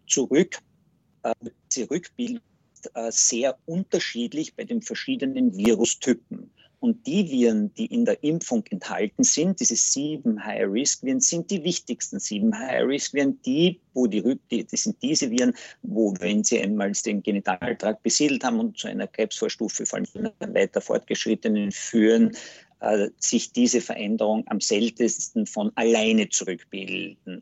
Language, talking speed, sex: German, 130 wpm, male